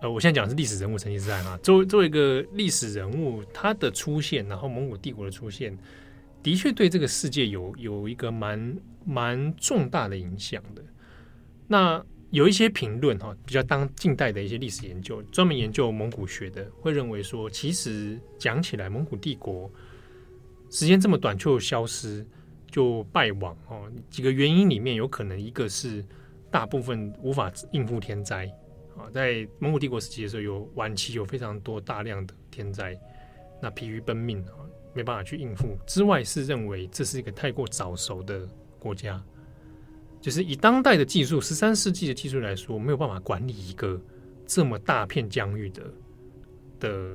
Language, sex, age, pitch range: Chinese, male, 20-39, 100-140 Hz